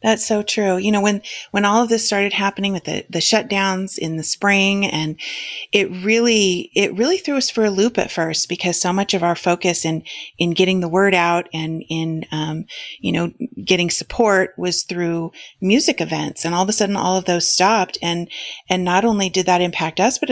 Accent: American